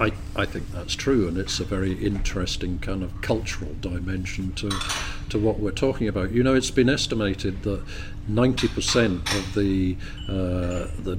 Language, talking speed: English, 160 wpm